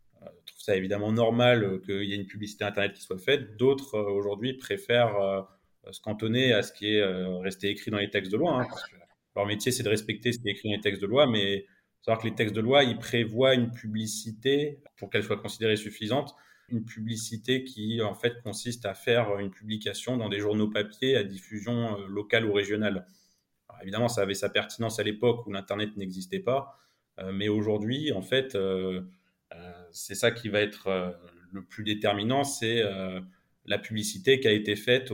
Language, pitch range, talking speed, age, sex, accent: French, 100-115 Hz, 195 wpm, 30-49, male, French